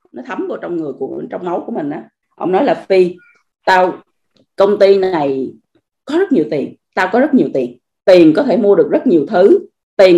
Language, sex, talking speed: Vietnamese, female, 220 wpm